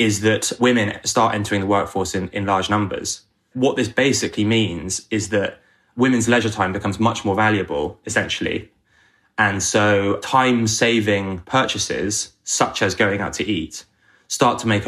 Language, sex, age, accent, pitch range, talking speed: English, male, 20-39, British, 100-115 Hz, 155 wpm